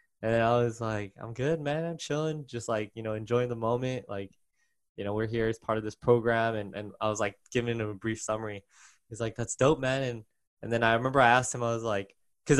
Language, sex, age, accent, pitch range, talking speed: English, male, 10-29, American, 110-125 Hz, 255 wpm